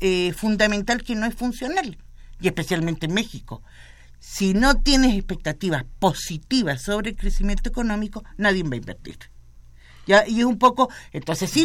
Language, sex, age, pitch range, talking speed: Spanish, female, 50-69, 160-225 Hz, 160 wpm